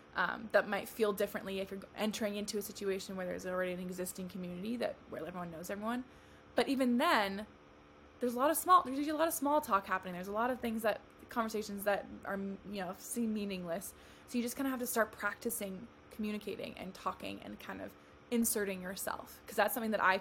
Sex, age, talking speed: female, 20-39, 215 wpm